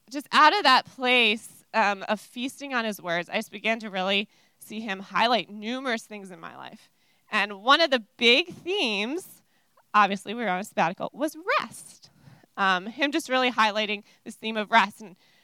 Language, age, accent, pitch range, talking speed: English, 20-39, American, 200-255 Hz, 185 wpm